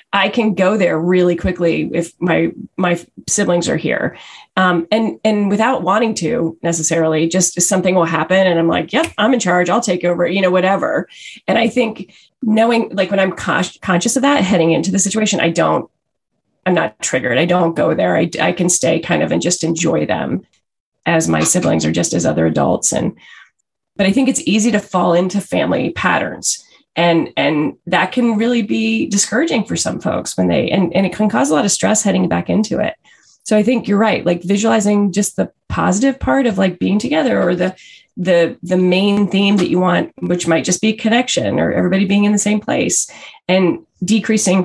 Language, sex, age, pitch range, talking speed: English, female, 30-49, 170-215 Hz, 205 wpm